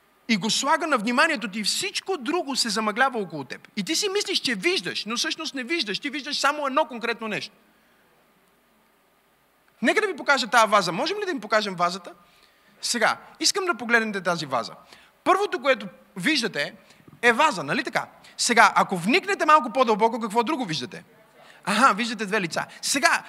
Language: Bulgarian